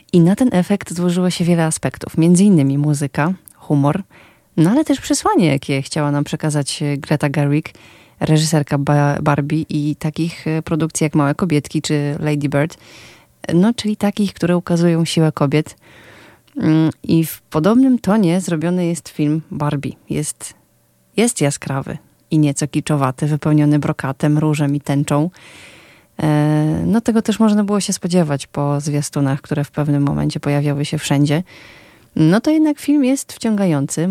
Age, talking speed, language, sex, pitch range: 30-49, 140 wpm, Polish, female, 150-175 Hz